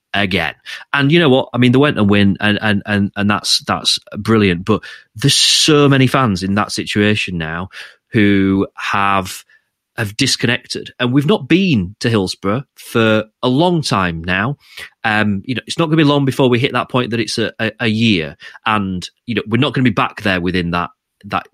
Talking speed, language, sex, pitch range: 210 wpm, English, male, 100-140 Hz